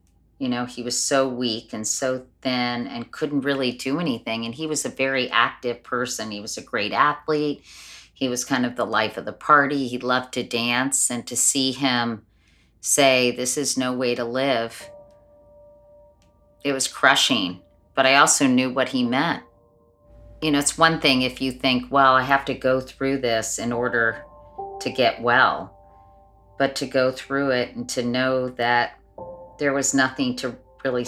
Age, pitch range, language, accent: 40-59, 115-135 Hz, English, American